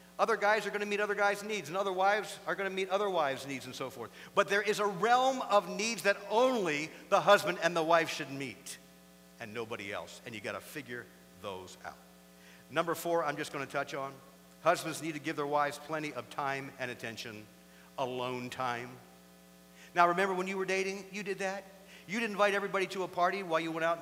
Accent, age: American, 50-69